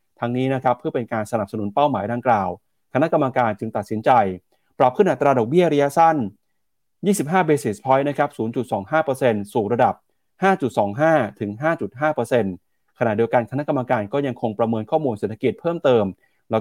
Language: Thai